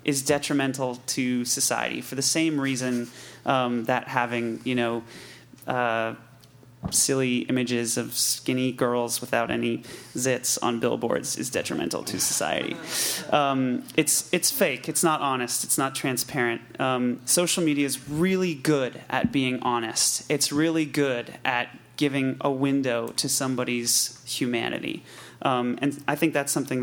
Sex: male